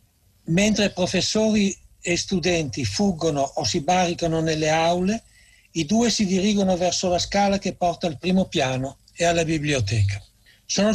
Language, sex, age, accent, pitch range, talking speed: Italian, male, 60-79, native, 130-200 Hz, 145 wpm